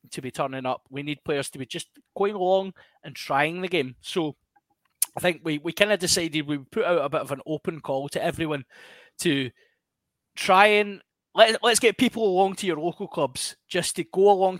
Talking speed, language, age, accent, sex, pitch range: 210 wpm, English, 20-39, British, male, 145-190 Hz